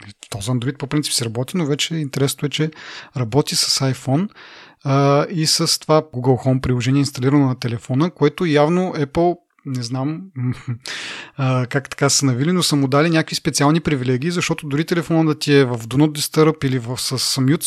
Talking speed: 185 wpm